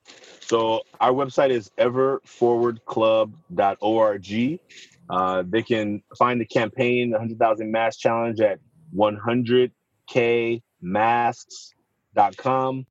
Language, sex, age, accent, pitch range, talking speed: English, male, 30-49, American, 110-130 Hz, 80 wpm